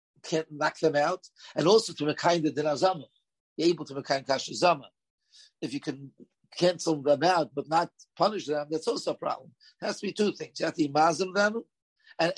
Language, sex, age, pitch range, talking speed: English, male, 50-69, 145-185 Hz, 225 wpm